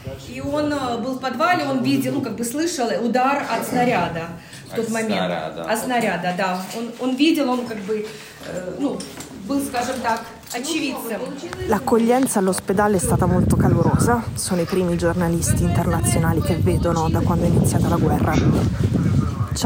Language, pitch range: Italian, 170-220 Hz